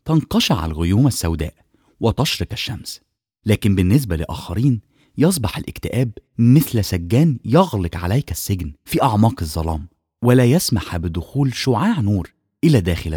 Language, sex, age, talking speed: English, male, 30-49, 115 wpm